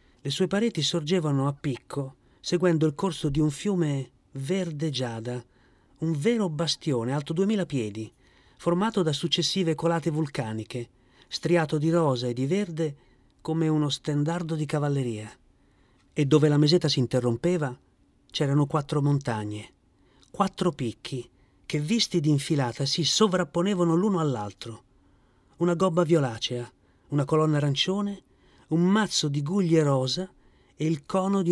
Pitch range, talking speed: 125-170 Hz, 135 wpm